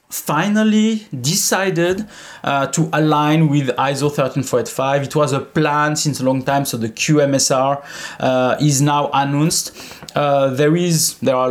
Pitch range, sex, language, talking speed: 130-165 Hz, male, English, 135 wpm